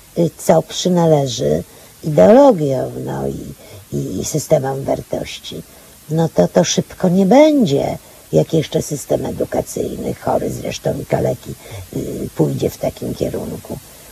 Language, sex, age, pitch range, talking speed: Polish, female, 50-69, 145-190 Hz, 115 wpm